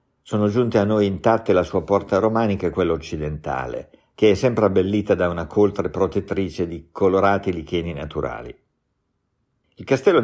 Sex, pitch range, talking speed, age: male, 85-105 Hz, 150 wpm, 50-69